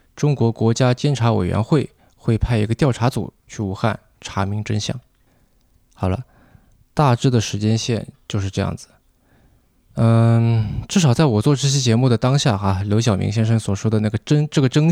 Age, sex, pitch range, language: 20-39, male, 105-135 Hz, Chinese